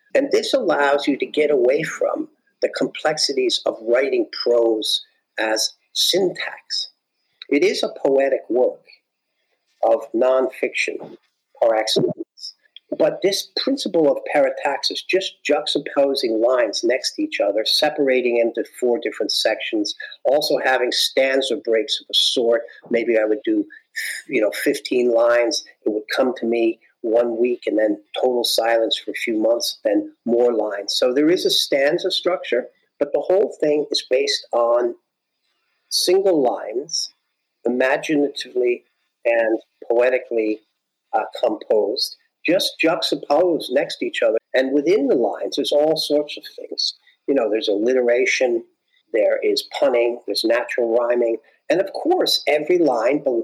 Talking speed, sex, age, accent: 140 wpm, male, 50-69, American